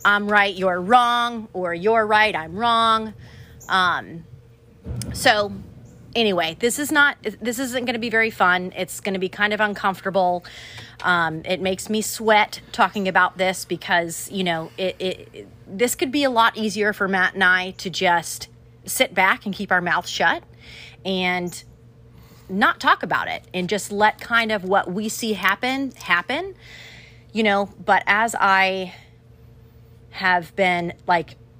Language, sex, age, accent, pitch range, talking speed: English, female, 30-49, American, 155-200 Hz, 160 wpm